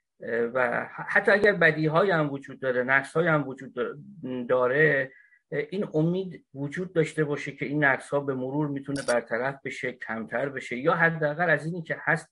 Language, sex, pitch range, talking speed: Persian, male, 135-165 Hz, 150 wpm